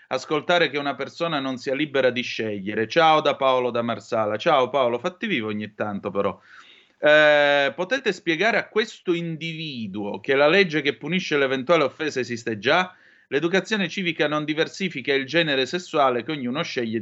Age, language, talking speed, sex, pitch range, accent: 30-49, Italian, 160 wpm, male, 115-165 Hz, native